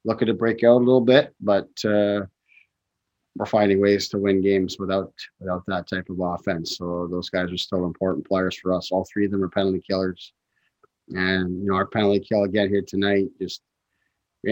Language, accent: English, American